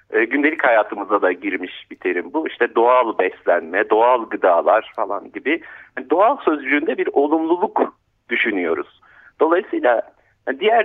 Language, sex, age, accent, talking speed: Turkish, male, 50-69, native, 120 wpm